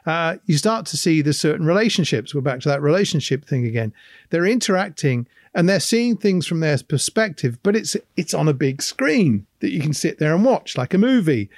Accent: British